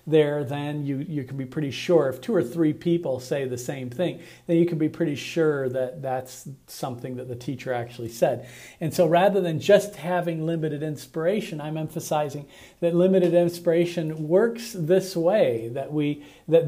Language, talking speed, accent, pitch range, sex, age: English, 180 wpm, American, 135-170 Hz, male, 40-59